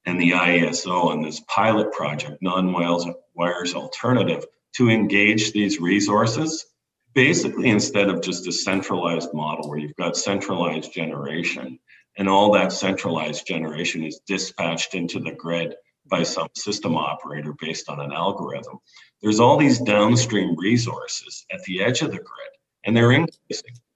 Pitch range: 90-115 Hz